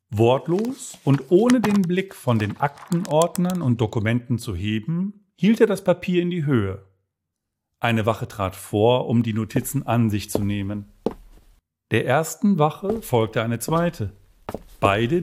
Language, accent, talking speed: German, German, 145 wpm